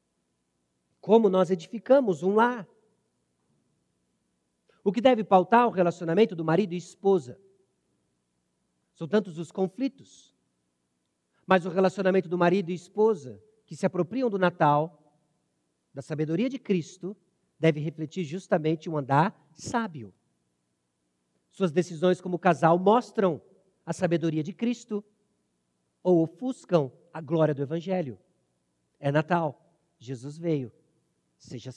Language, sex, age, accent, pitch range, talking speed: Portuguese, male, 50-69, Brazilian, 125-205 Hz, 115 wpm